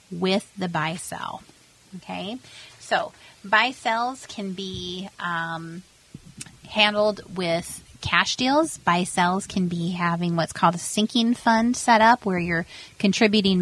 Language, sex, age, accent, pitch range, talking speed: English, female, 30-49, American, 175-210 Hz, 120 wpm